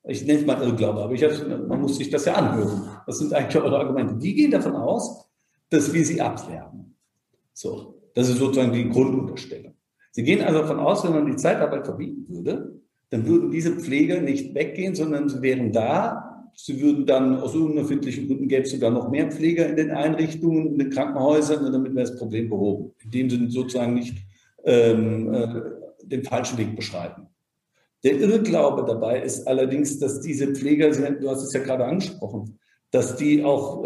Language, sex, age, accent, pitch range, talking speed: German, male, 50-69, German, 120-155 Hz, 185 wpm